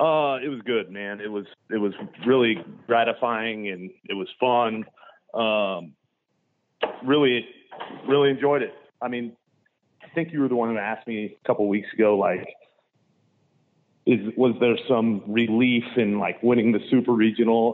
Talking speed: 160 wpm